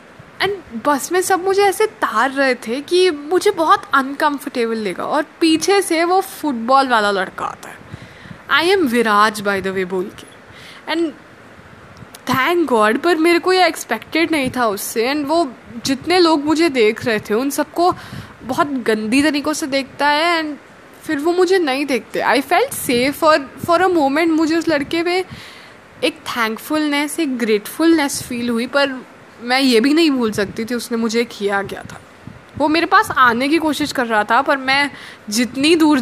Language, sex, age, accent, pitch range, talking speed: Hindi, female, 20-39, native, 230-325 Hz, 175 wpm